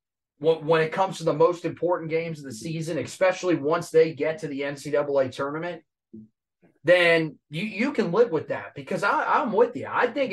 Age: 30-49